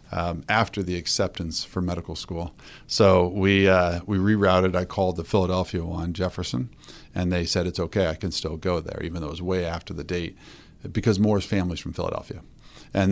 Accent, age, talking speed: American, 40-59, 190 wpm